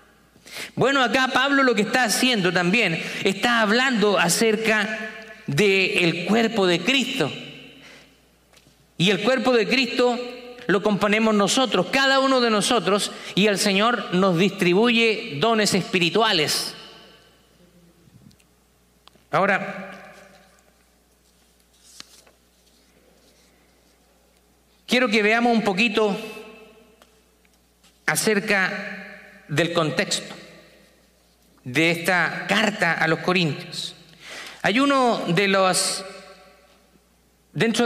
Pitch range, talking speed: 175-225 Hz, 85 wpm